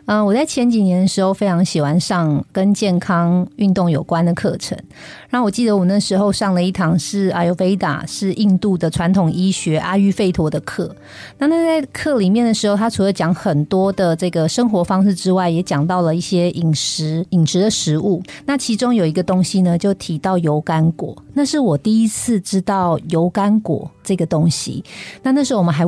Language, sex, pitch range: Chinese, female, 165-210 Hz